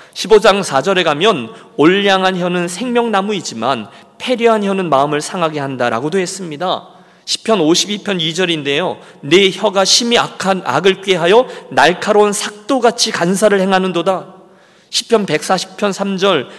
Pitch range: 175-210 Hz